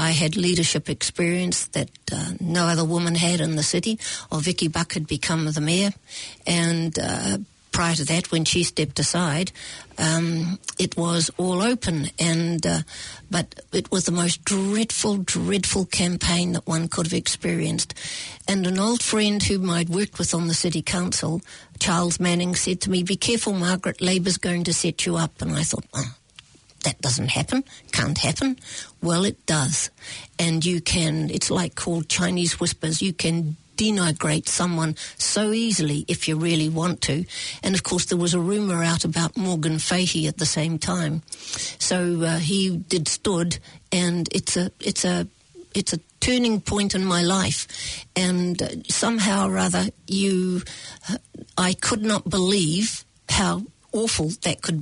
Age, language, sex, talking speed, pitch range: 60-79, English, female, 170 wpm, 165-190 Hz